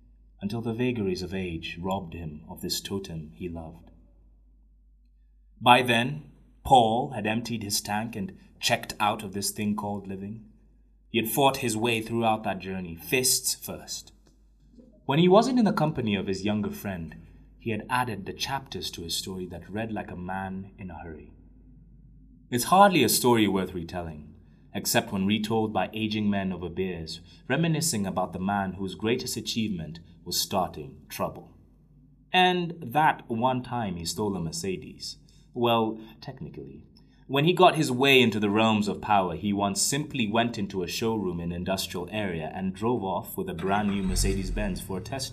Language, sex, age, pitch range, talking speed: English, male, 30-49, 90-120 Hz, 170 wpm